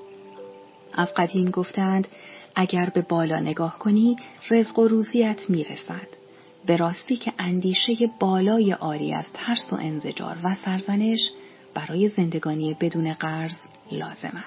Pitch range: 165-220 Hz